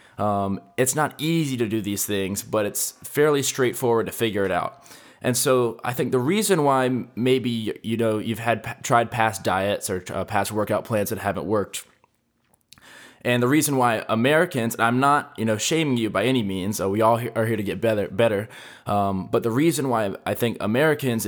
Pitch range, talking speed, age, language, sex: 100-125 Hz, 195 wpm, 20-39, English, male